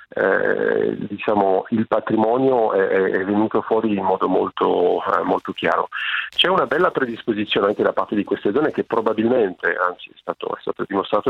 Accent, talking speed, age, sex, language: native, 170 wpm, 40-59, male, Italian